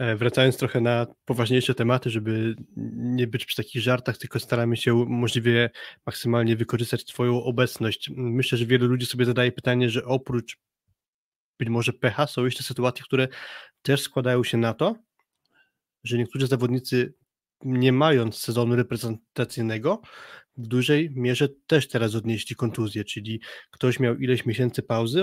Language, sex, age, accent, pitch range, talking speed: Polish, male, 20-39, native, 120-130 Hz, 145 wpm